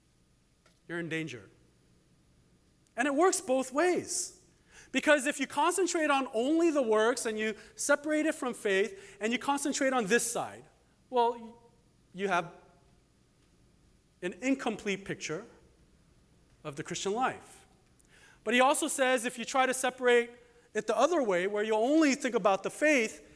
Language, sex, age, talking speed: English, male, 40-59, 150 wpm